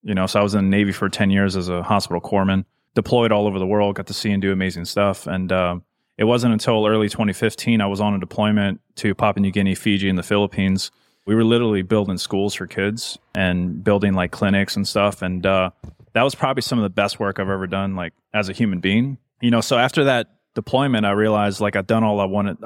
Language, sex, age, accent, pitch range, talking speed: English, male, 30-49, American, 95-105 Hz, 245 wpm